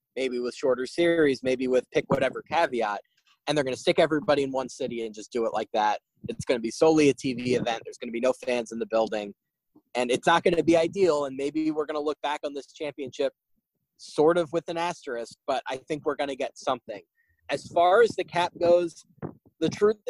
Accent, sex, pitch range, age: American, male, 130-170 Hz, 20-39